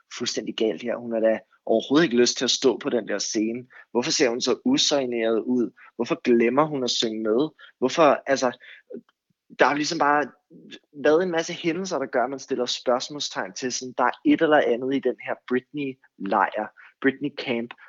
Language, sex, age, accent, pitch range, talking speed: Danish, male, 20-39, native, 115-145 Hz, 190 wpm